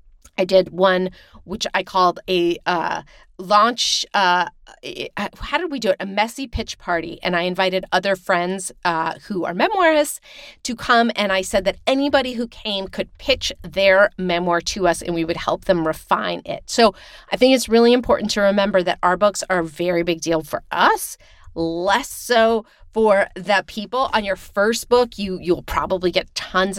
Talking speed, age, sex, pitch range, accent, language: 185 wpm, 40-59, female, 185-240 Hz, American, English